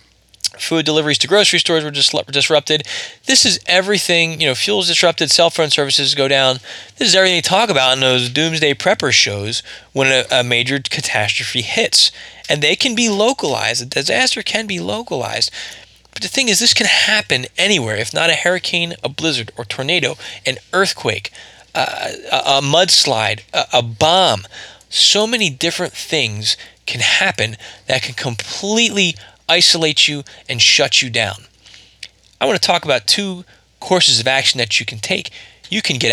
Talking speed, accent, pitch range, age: 170 wpm, American, 115-165 Hz, 20-39